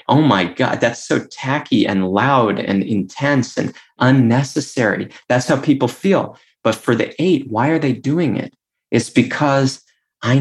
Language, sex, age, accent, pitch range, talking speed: English, male, 30-49, American, 105-145 Hz, 160 wpm